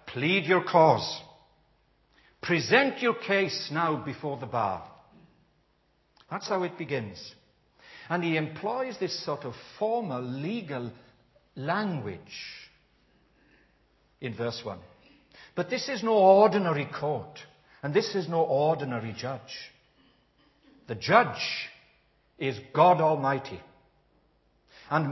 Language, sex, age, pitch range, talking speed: English, male, 60-79, 135-185 Hz, 105 wpm